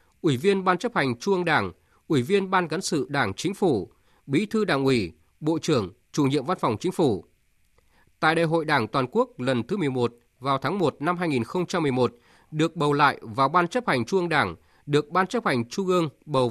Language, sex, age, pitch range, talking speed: Vietnamese, male, 20-39, 125-180 Hz, 215 wpm